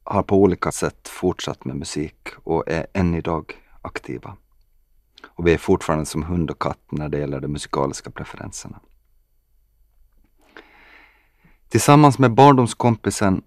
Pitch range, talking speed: 75-95 Hz, 130 wpm